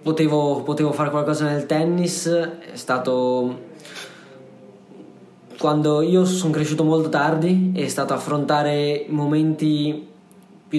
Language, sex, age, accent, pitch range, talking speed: Italian, male, 20-39, native, 130-155 Hz, 105 wpm